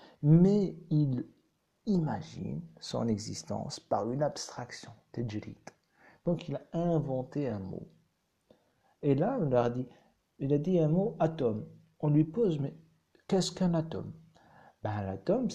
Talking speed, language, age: 135 wpm, Arabic, 60-79